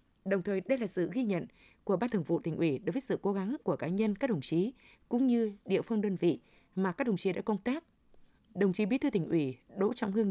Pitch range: 175-230 Hz